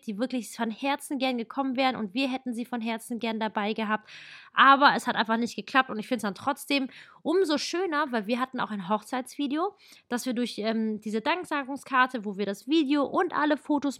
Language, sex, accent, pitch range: German, female, German, 220-280 Hz